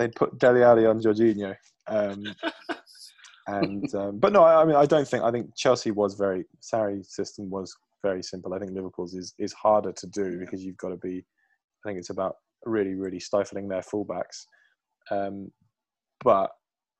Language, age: English, 20-39